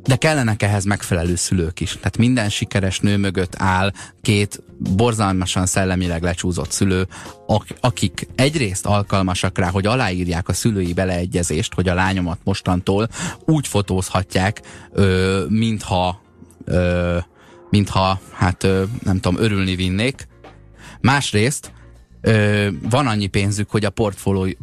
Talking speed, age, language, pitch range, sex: 110 wpm, 30-49, Hungarian, 90-110 Hz, male